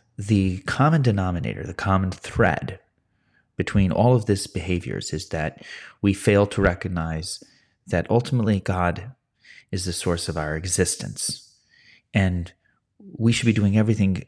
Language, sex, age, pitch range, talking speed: English, male, 30-49, 95-120 Hz, 135 wpm